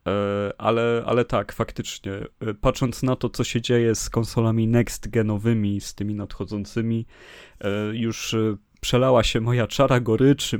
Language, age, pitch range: Polish, 30-49, 100-120 Hz